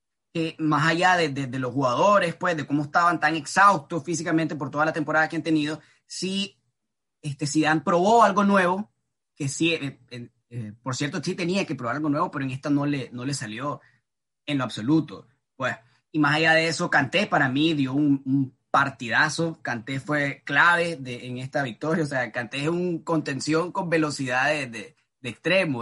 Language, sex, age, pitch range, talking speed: Spanish, male, 20-39, 135-170 Hz, 200 wpm